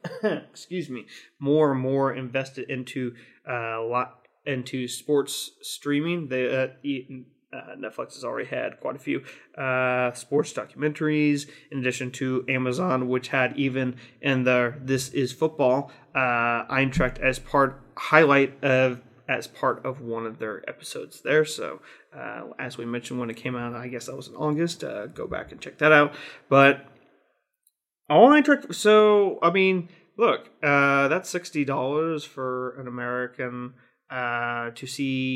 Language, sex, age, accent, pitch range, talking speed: English, male, 30-49, American, 125-150 Hz, 155 wpm